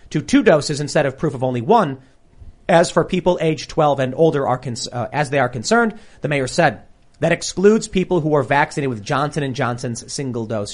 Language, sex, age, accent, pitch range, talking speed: English, male, 30-49, American, 130-185 Hz, 200 wpm